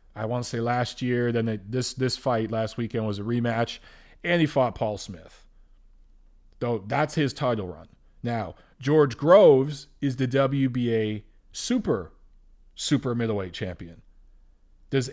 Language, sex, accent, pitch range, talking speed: English, male, American, 110-140 Hz, 145 wpm